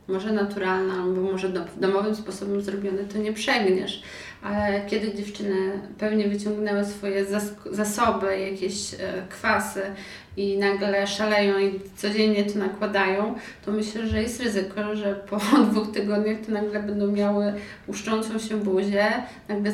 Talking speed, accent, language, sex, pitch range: 135 wpm, native, Polish, female, 200-220 Hz